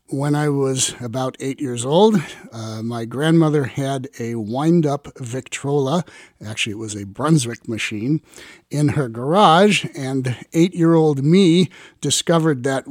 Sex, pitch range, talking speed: male, 130-170 Hz, 130 wpm